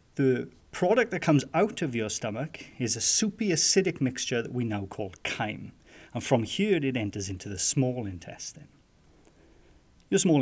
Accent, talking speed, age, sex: British, 160 wpm, 30-49, male